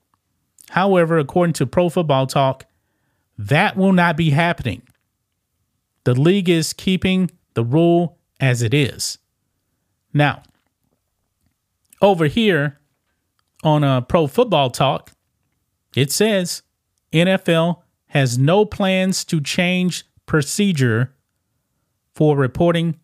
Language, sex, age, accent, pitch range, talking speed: English, male, 30-49, American, 125-175 Hz, 100 wpm